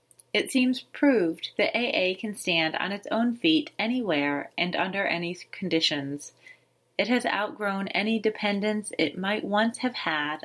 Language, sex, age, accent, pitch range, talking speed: English, female, 30-49, American, 175-230 Hz, 150 wpm